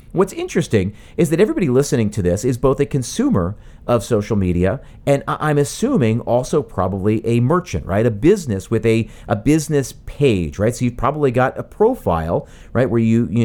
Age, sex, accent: 40-59, male, American